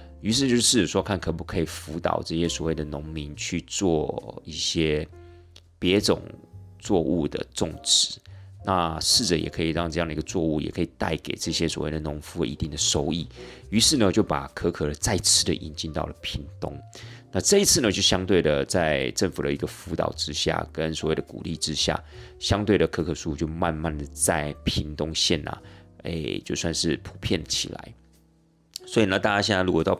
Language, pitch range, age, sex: Chinese, 80-95 Hz, 30-49, male